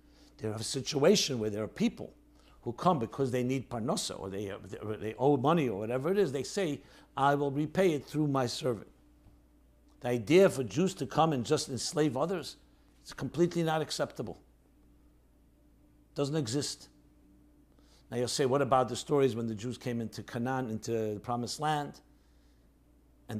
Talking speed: 175 wpm